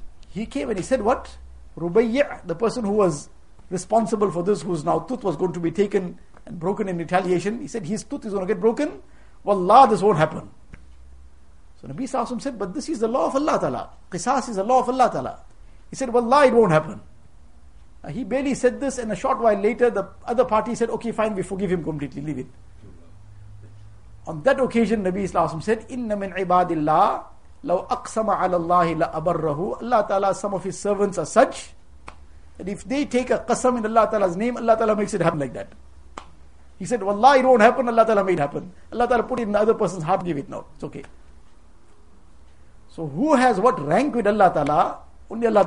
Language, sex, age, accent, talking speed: English, male, 50-69, Indian, 210 wpm